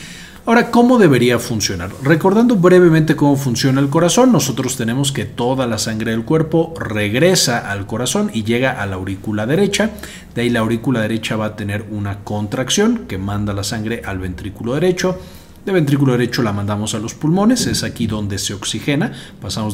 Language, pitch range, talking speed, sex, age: Spanish, 105-155 Hz, 175 wpm, male, 40-59